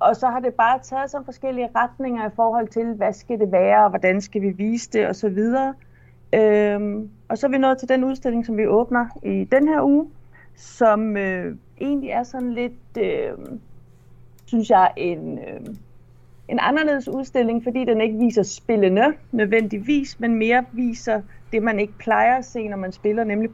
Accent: native